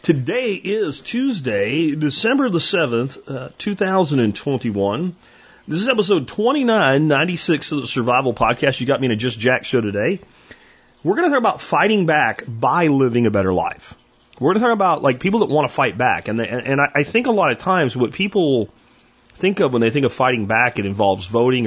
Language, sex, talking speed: English, male, 215 wpm